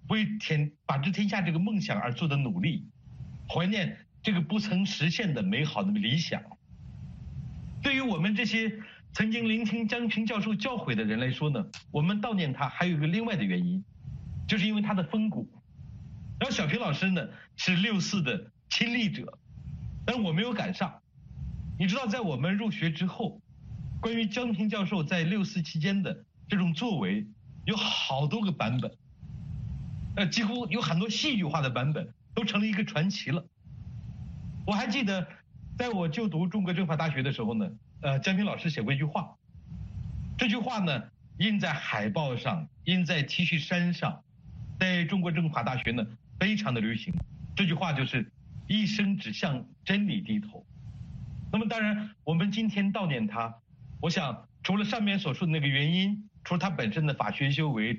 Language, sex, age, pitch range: Chinese, male, 50-69, 155-210 Hz